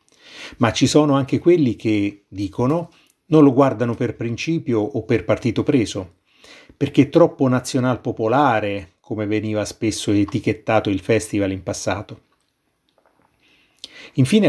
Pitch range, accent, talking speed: 105-130 Hz, native, 125 wpm